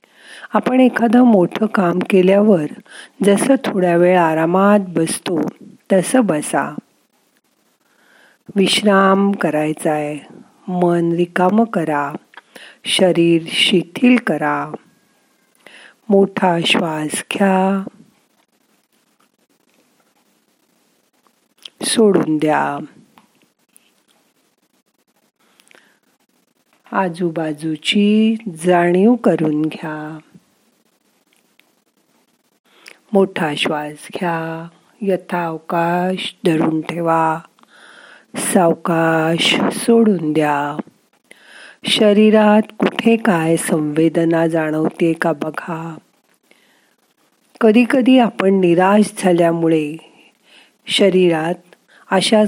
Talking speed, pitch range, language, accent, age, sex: 60 wpm, 165-210 Hz, Marathi, native, 50-69, female